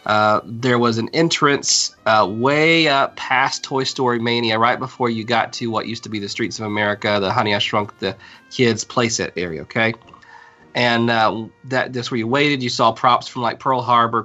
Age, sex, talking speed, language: 30-49, male, 200 wpm, English